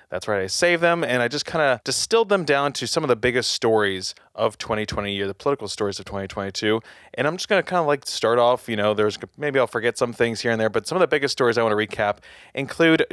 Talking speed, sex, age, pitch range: 270 wpm, male, 20-39, 105-135 Hz